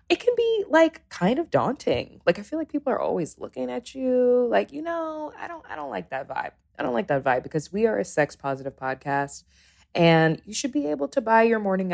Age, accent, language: 20-39, American, English